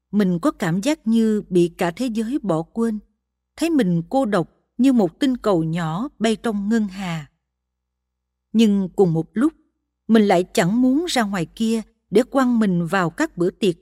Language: Vietnamese